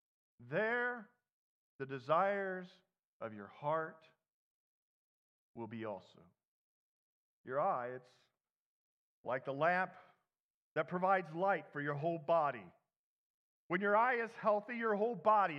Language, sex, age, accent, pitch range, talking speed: English, male, 40-59, American, 140-205 Hz, 115 wpm